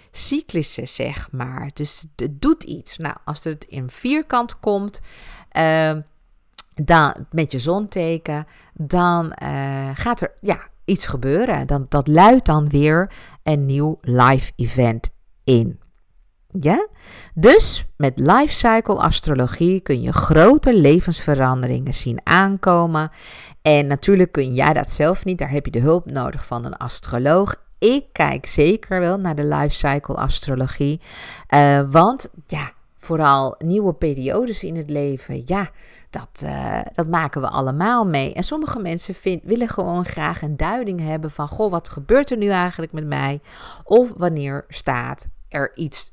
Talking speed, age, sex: 150 wpm, 50-69, female